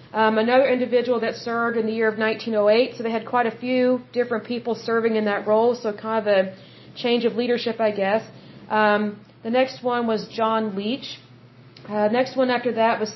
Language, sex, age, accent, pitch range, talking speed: Hindi, female, 40-59, American, 220-245 Hz, 210 wpm